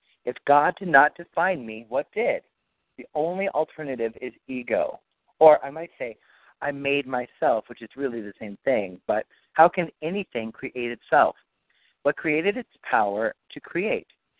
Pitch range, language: 115-150 Hz, English